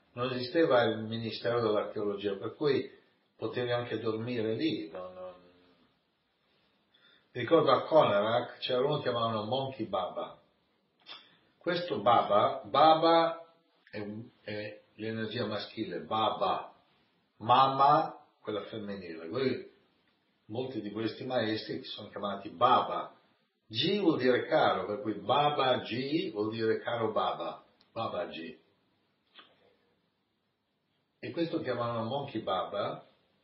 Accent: native